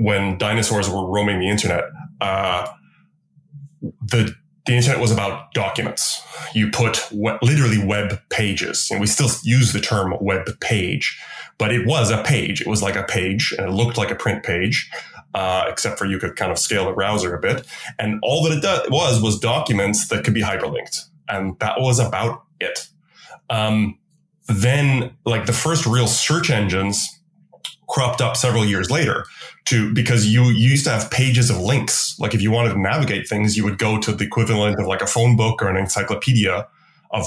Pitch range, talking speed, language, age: 105-135 Hz, 185 wpm, English, 20-39